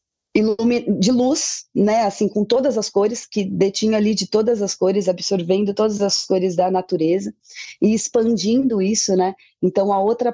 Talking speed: 165 wpm